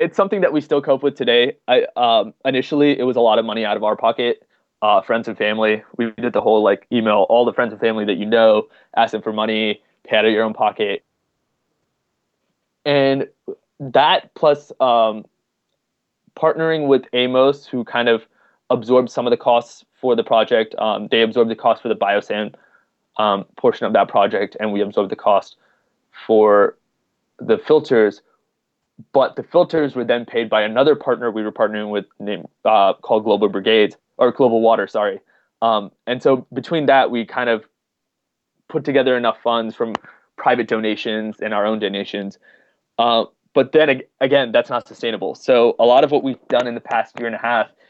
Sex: male